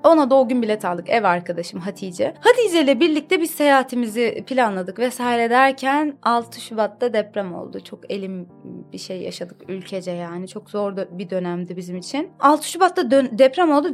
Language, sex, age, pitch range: Turkish, female, 30-49, 195-285 Hz